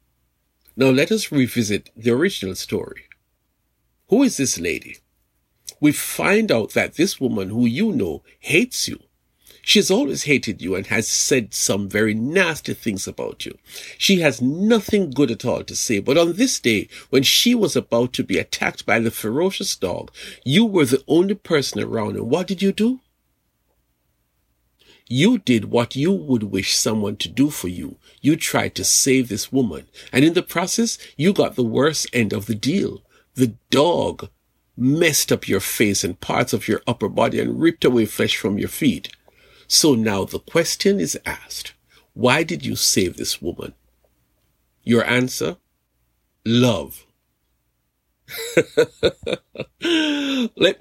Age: 50-69